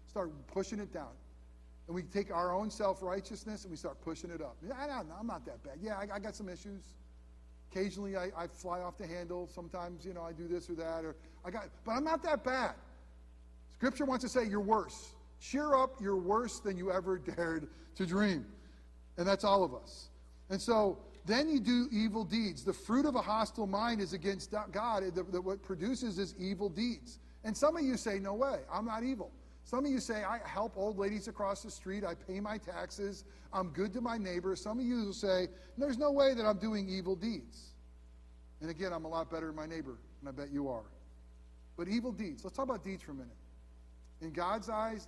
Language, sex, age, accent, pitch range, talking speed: English, male, 40-59, American, 150-215 Hz, 220 wpm